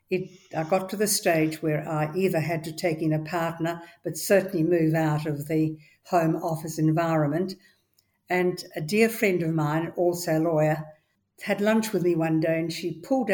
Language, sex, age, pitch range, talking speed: English, female, 60-79, 160-185 Hz, 185 wpm